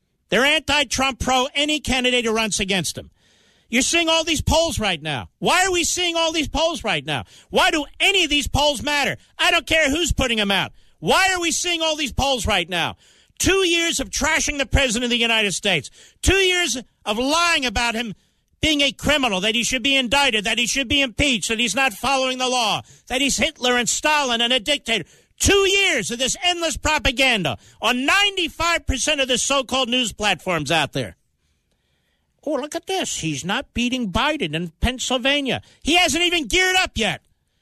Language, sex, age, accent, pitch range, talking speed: English, male, 50-69, American, 210-315 Hz, 195 wpm